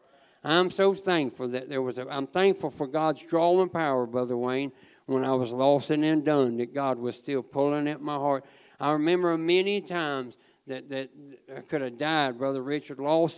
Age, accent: 60-79, American